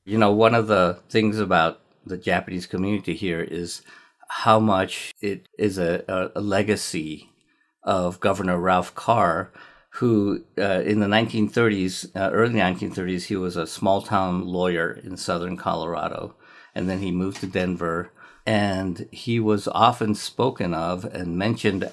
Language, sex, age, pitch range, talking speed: English, male, 50-69, 90-110 Hz, 150 wpm